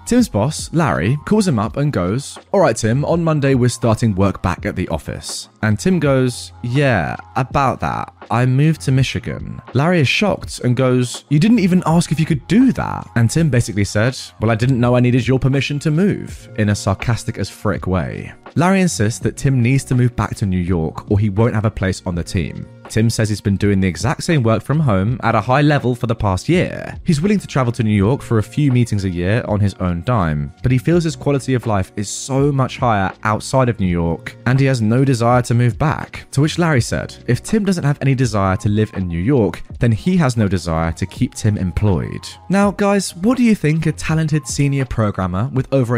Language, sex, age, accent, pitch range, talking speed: English, male, 20-39, British, 105-145 Hz, 235 wpm